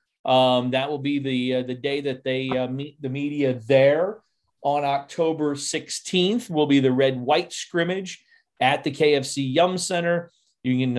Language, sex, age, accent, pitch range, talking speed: English, male, 30-49, American, 125-150 Hz, 170 wpm